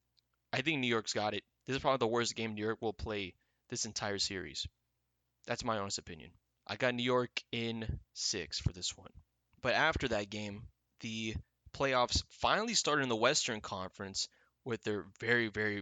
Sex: male